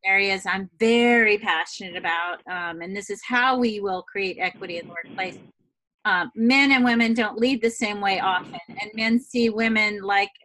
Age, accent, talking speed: 30-49, American, 185 wpm